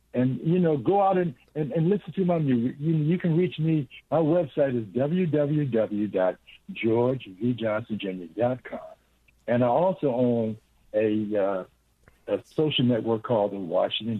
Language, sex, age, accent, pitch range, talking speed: English, male, 60-79, American, 115-170 Hz, 140 wpm